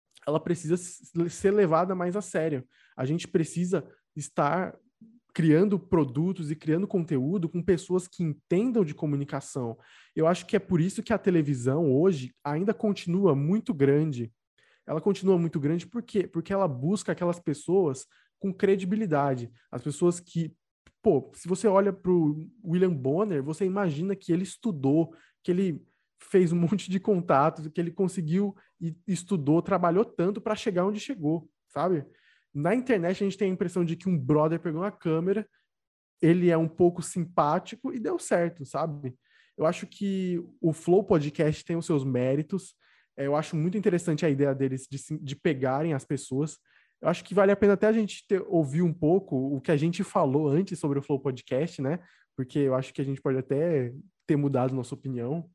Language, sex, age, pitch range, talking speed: Portuguese, male, 20-39, 150-190 Hz, 175 wpm